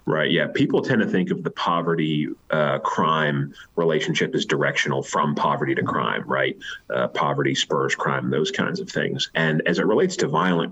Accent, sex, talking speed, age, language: American, male, 185 wpm, 30-49, English